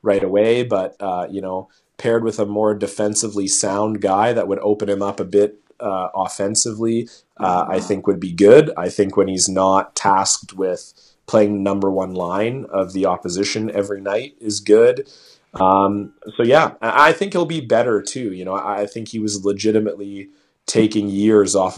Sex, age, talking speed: male, 30-49, 180 wpm